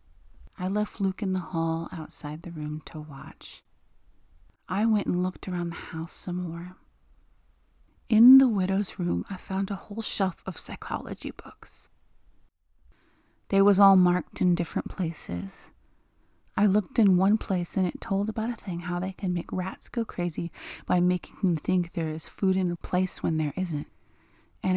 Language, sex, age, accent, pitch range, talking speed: English, female, 30-49, American, 150-195 Hz, 170 wpm